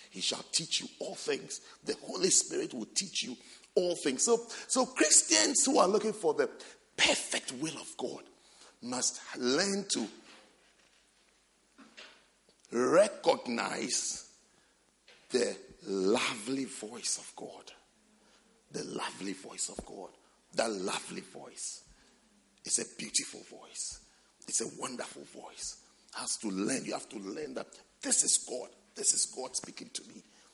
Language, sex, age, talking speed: English, male, 50-69, 135 wpm